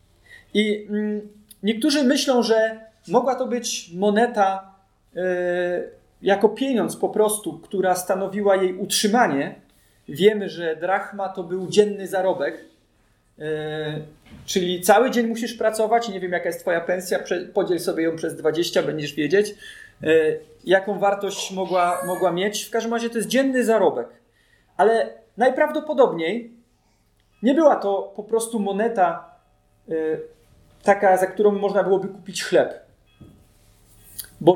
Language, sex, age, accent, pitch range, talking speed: Polish, male, 30-49, native, 180-230 Hz, 130 wpm